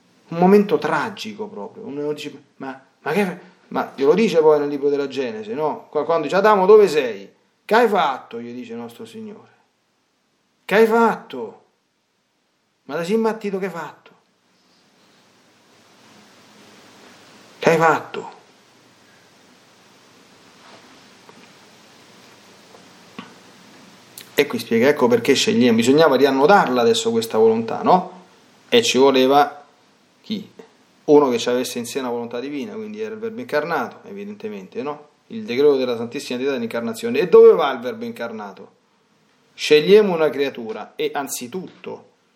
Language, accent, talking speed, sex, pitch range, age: Italian, native, 130 wpm, male, 145-230 Hz, 40-59